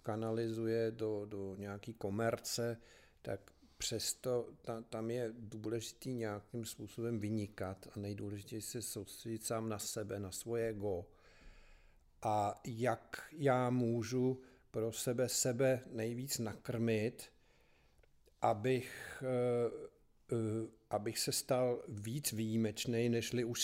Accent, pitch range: native, 110-125 Hz